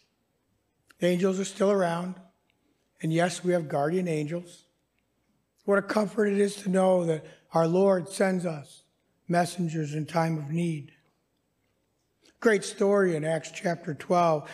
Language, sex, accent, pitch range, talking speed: English, male, American, 160-200 Hz, 135 wpm